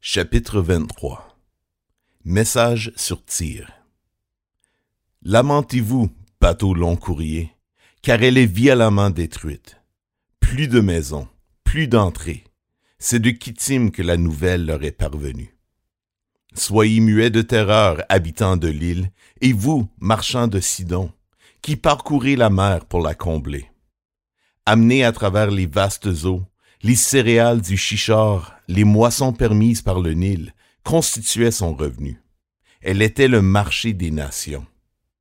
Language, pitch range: French, 90-120 Hz